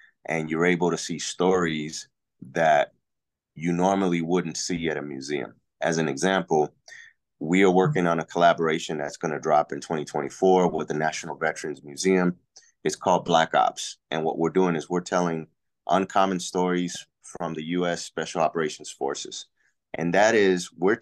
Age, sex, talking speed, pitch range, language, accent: 30-49, male, 165 wpm, 80-95 Hz, English, American